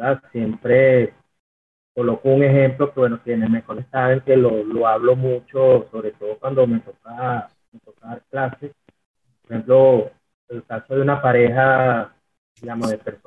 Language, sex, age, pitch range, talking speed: Spanish, male, 30-49, 115-135 Hz, 160 wpm